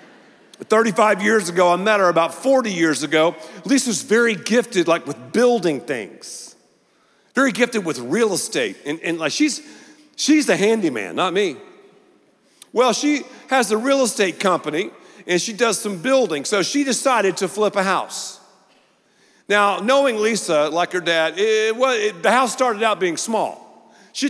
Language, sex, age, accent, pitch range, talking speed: English, male, 50-69, American, 165-265 Hz, 165 wpm